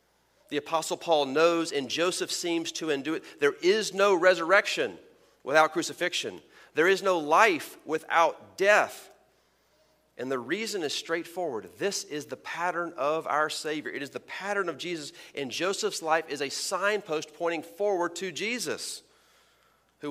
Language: English